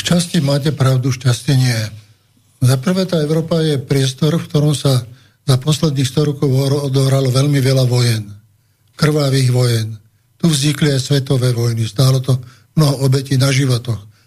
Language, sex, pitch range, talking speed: Slovak, male, 125-150 Hz, 145 wpm